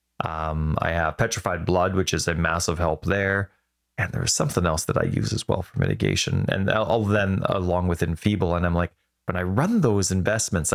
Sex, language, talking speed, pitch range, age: male, English, 205 wpm, 85-115 Hz, 30-49